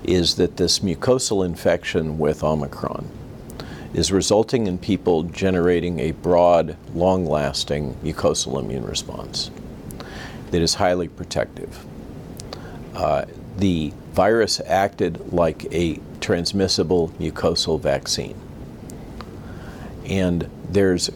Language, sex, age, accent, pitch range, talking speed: English, male, 50-69, American, 85-100 Hz, 95 wpm